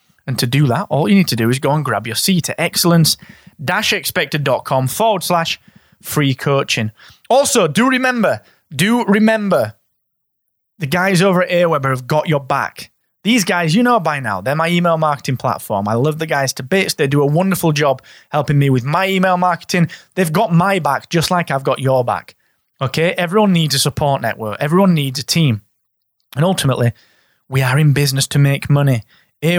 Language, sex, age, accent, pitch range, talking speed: English, male, 20-39, British, 125-175 Hz, 190 wpm